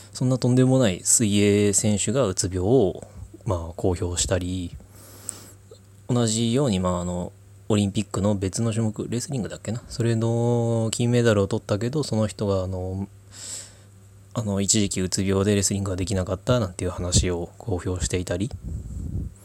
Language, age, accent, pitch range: Japanese, 20-39, native, 95-110 Hz